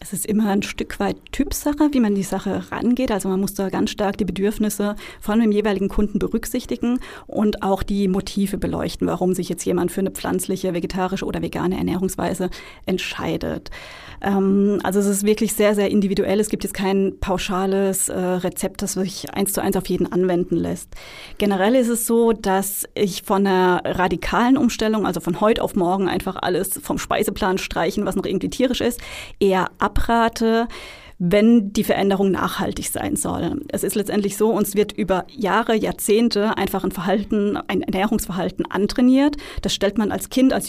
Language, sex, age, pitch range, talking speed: German, female, 30-49, 190-220 Hz, 175 wpm